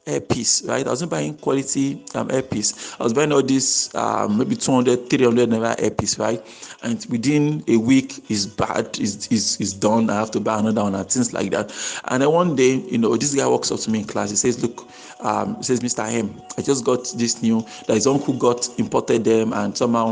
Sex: male